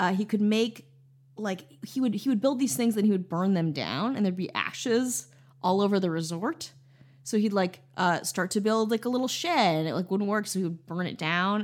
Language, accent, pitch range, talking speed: English, American, 160-210 Hz, 245 wpm